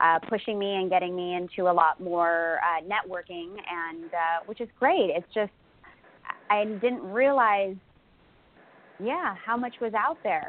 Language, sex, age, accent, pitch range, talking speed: English, female, 20-39, American, 185-250 Hz, 160 wpm